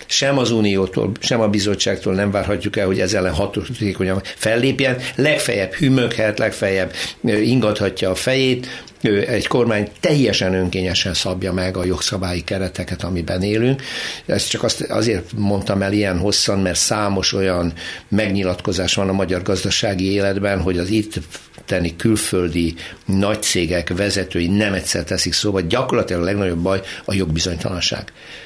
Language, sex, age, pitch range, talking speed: Hungarian, male, 60-79, 95-110 Hz, 135 wpm